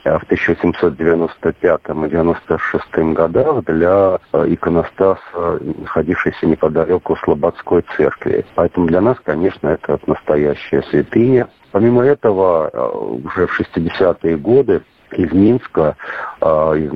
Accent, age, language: native, 50-69, Russian